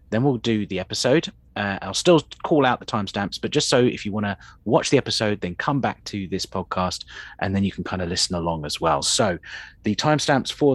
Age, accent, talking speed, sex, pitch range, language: 30-49, British, 235 wpm, male, 100-135 Hz, English